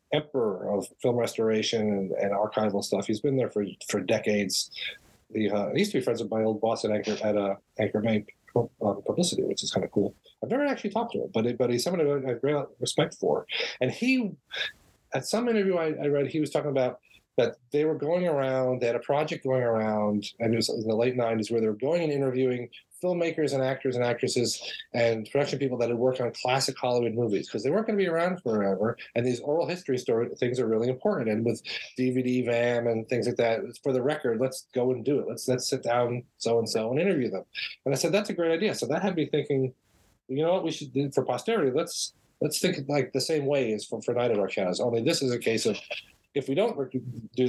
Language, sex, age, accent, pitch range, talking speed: English, male, 40-59, American, 115-155 Hz, 240 wpm